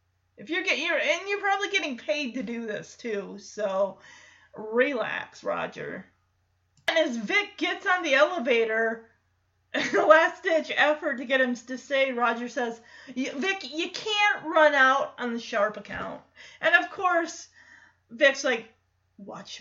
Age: 30-49